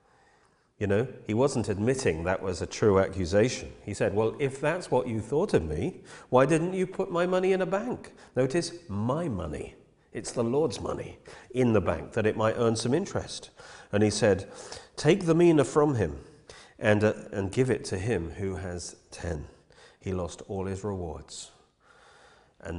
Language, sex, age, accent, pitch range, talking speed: English, male, 40-59, British, 90-130 Hz, 180 wpm